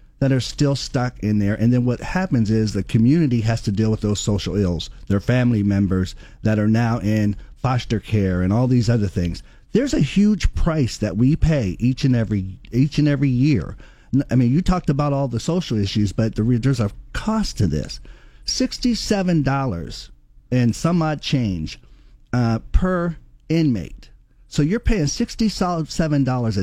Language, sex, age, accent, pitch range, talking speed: English, male, 50-69, American, 110-150 Hz, 170 wpm